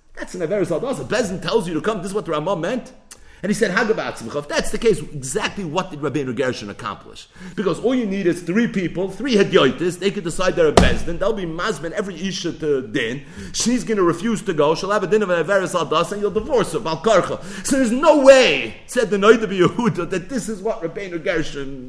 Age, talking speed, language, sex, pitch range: 50-69, 230 wpm, English, male, 160-255 Hz